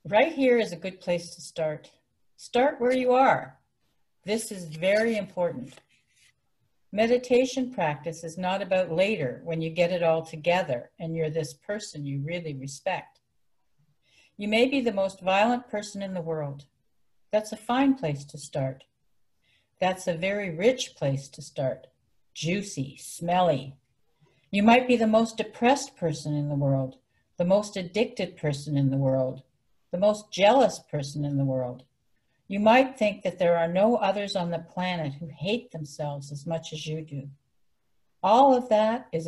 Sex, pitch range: female, 150-210 Hz